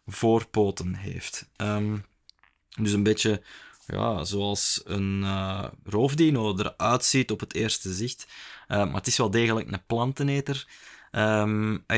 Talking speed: 120 wpm